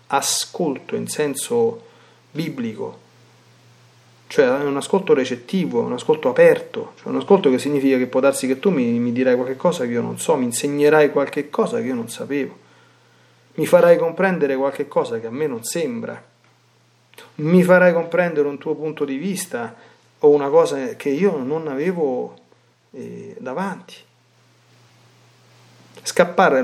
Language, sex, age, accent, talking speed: Italian, male, 40-59, native, 145 wpm